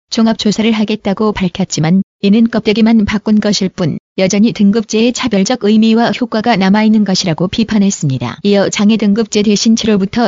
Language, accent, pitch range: Korean, native, 200-225 Hz